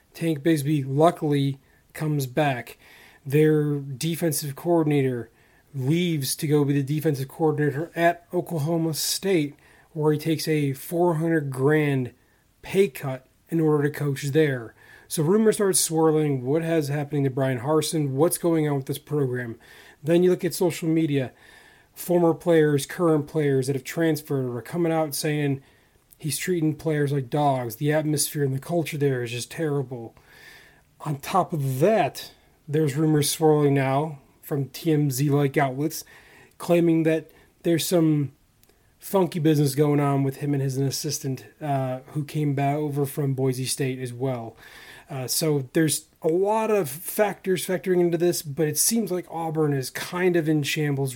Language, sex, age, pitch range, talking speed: English, male, 30-49, 140-165 Hz, 155 wpm